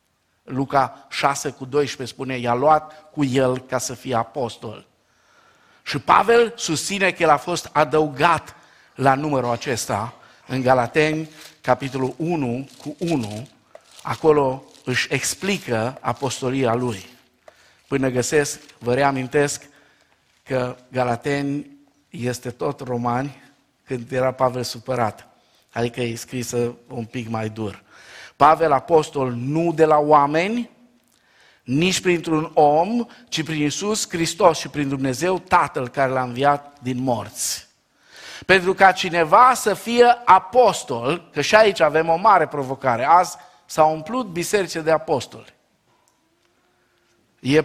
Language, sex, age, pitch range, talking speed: Romanian, male, 50-69, 125-175 Hz, 120 wpm